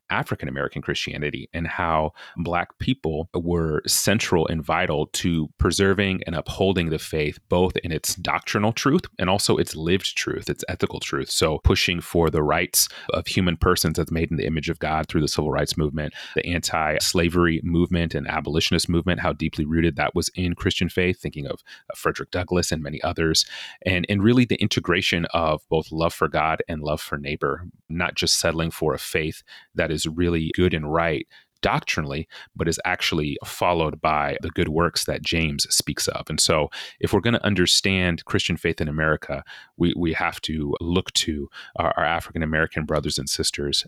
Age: 30-49